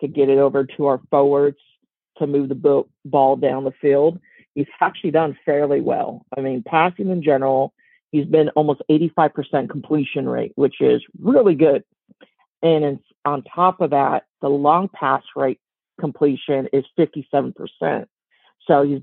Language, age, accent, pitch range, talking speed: English, 50-69, American, 140-155 Hz, 150 wpm